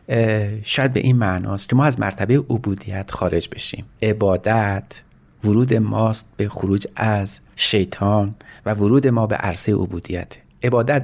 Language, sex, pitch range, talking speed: Persian, male, 100-125 Hz, 135 wpm